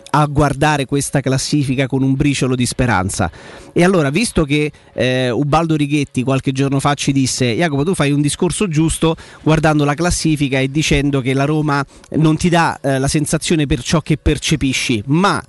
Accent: native